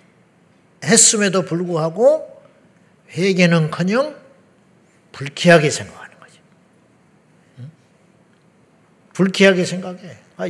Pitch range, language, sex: 165-195 Hz, Korean, male